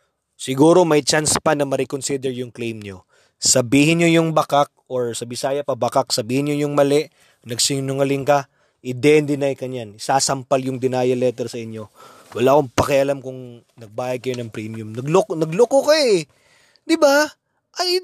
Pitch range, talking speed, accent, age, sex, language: 125-200 Hz, 155 wpm, native, 20-39, male, Filipino